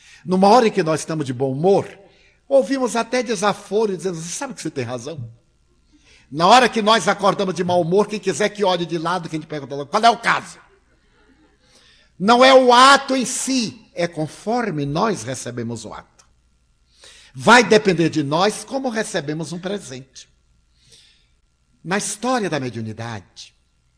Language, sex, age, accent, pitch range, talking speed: Portuguese, male, 60-79, Brazilian, 115-195 Hz, 160 wpm